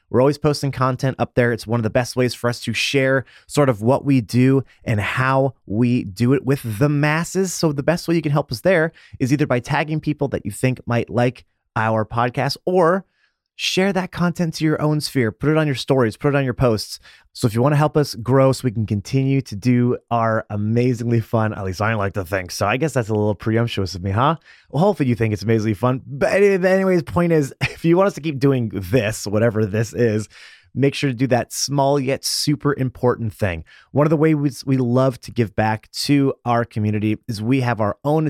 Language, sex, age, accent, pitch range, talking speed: English, male, 30-49, American, 115-145 Hz, 235 wpm